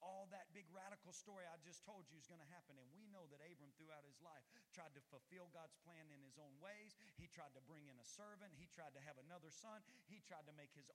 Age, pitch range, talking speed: 40-59, 185-230 Hz, 265 wpm